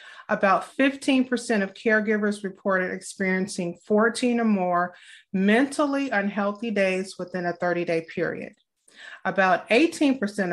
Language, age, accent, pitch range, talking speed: English, 30-49, American, 175-215 Hz, 105 wpm